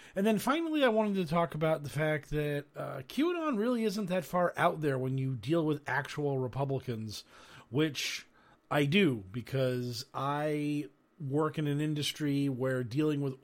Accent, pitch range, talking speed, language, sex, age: American, 135-165 Hz, 165 wpm, English, male, 40-59